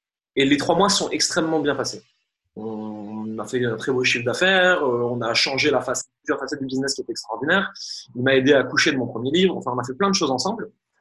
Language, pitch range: French, 125-170 Hz